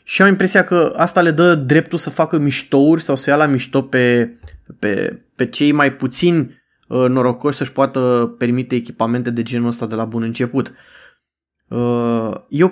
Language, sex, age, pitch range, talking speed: Romanian, male, 20-39, 130-160 Hz, 165 wpm